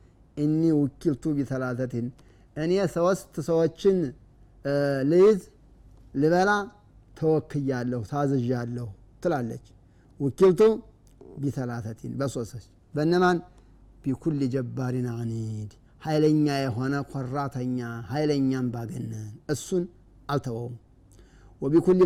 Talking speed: 75 wpm